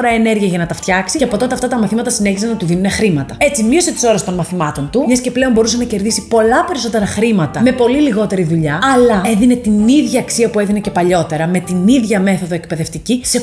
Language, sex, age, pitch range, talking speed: Greek, female, 30-49, 185-245 Hz, 230 wpm